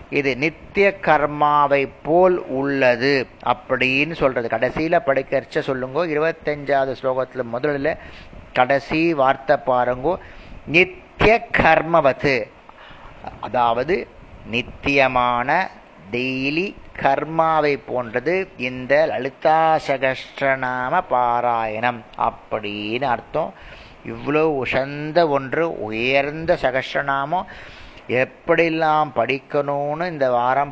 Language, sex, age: Tamil, male, 30-49